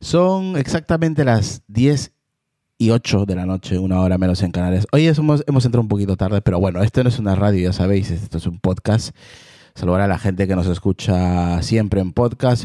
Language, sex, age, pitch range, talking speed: Spanish, male, 30-49, 90-120 Hz, 210 wpm